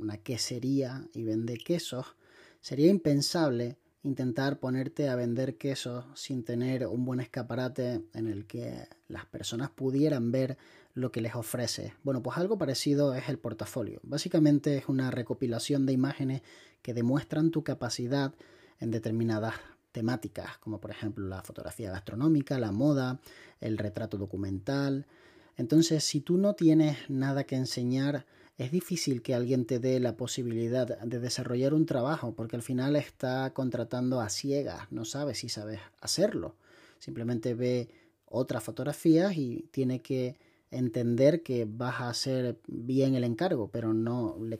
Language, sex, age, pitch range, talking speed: Spanish, male, 30-49, 120-140 Hz, 145 wpm